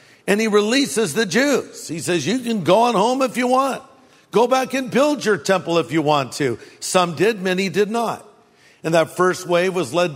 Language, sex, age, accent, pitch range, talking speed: English, male, 50-69, American, 160-205 Hz, 215 wpm